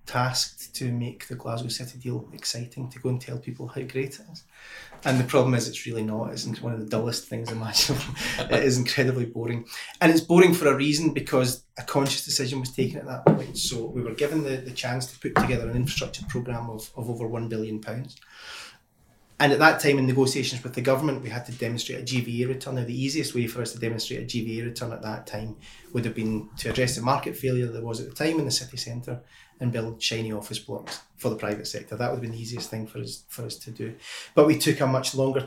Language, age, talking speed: English, 30-49, 245 wpm